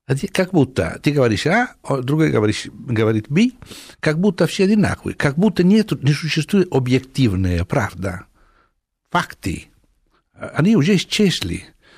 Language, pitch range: Russian, 95-155 Hz